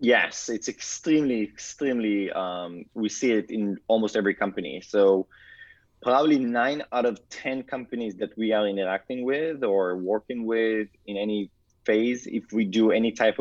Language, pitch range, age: English, 105-130 Hz, 20-39